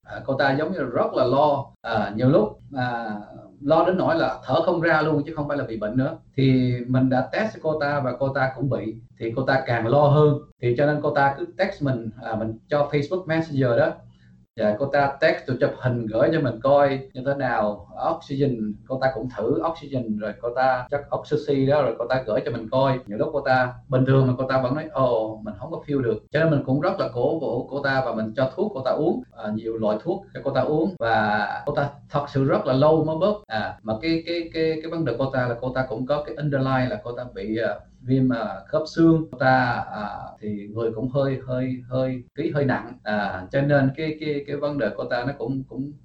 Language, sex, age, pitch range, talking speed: Vietnamese, male, 20-39, 120-145 Hz, 250 wpm